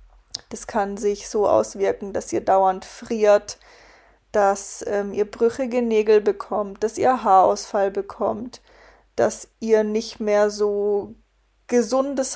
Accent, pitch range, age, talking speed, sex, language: German, 215-240 Hz, 20-39, 120 wpm, female, German